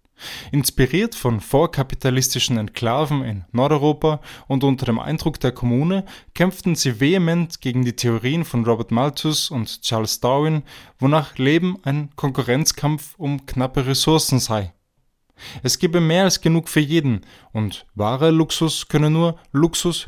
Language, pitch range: German, 120-150 Hz